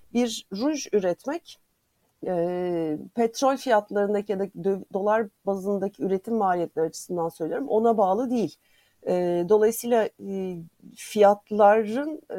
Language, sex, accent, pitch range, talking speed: Turkish, female, native, 180-230 Hz, 85 wpm